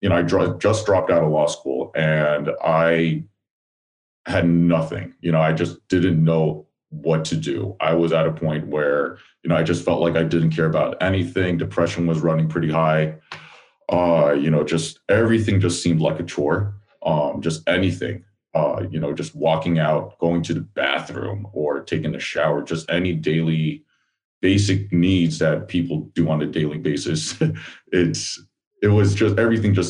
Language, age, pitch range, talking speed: English, 30-49, 80-100 Hz, 180 wpm